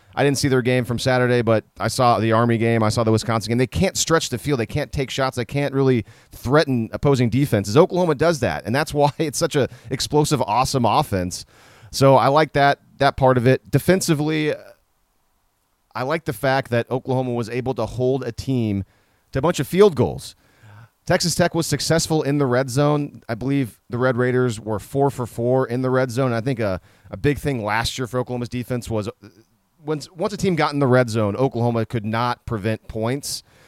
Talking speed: 215 wpm